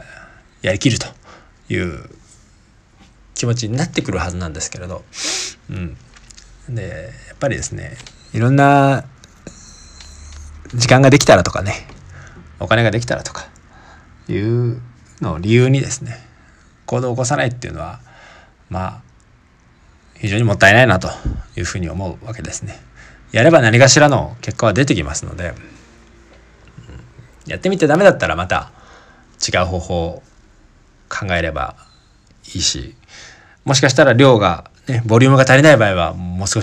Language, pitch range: Japanese, 90-125 Hz